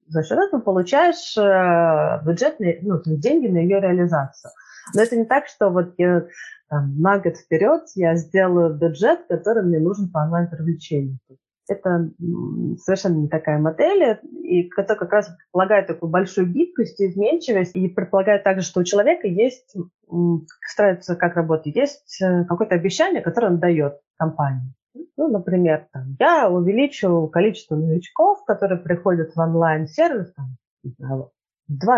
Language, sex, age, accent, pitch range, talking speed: Russian, female, 30-49, native, 165-220 Hz, 145 wpm